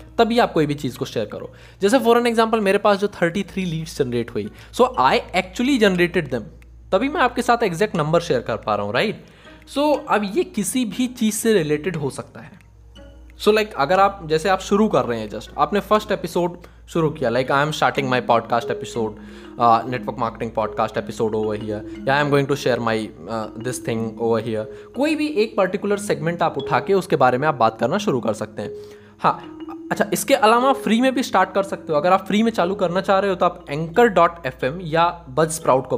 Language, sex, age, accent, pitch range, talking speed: Hindi, male, 20-39, native, 135-205 Hz, 165 wpm